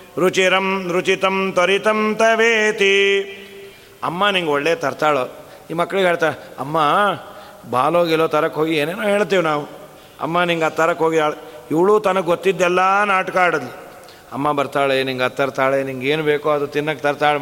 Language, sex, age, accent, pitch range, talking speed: Kannada, male, 40-59, native, 155-210 Hz, 135 wpm